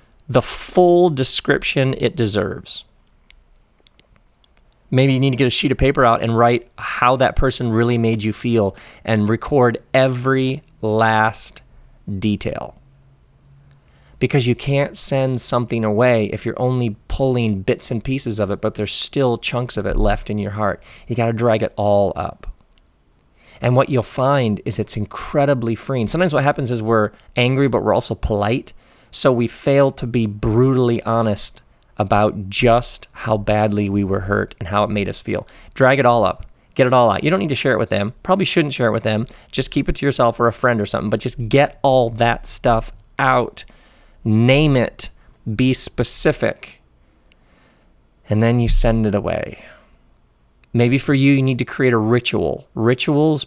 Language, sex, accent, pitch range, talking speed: English, male, American, 110-130 Hz, 175 wpm